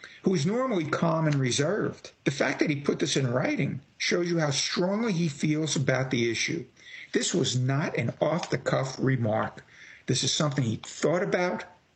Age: 60-79